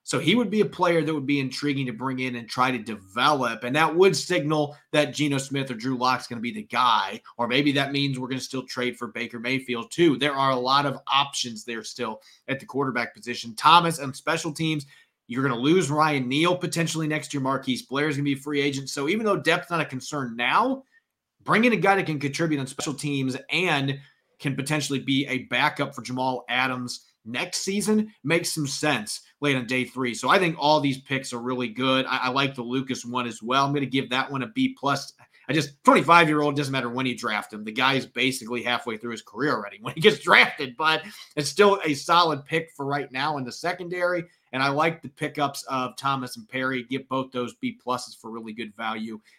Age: 30-49